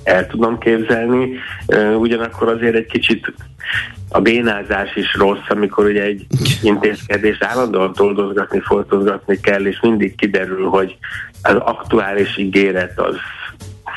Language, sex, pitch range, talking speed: Hungarian, male, 95-105 Hz, 115 wpm